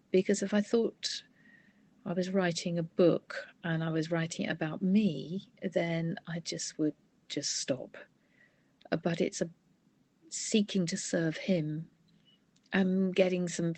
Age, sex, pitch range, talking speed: 50-69, female, 160-195 Hz, 135 wpm